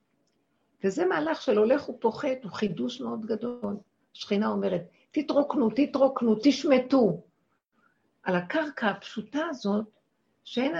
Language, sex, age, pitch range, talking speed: Hebrew, female, 50-69, 200-280 Hz, 105 wpm